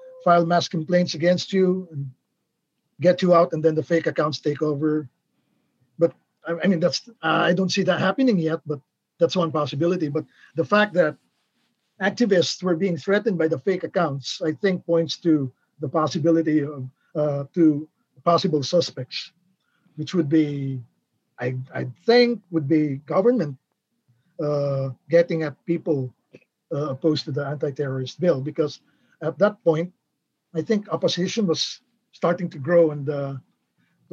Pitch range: 145-175 Hz